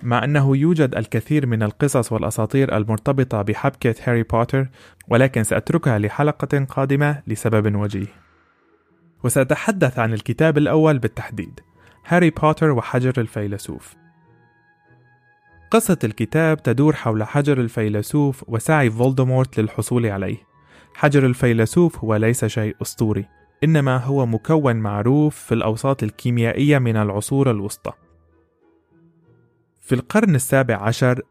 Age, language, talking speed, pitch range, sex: 20-39, Arabic, 105 wpm, 110-145 Hz, male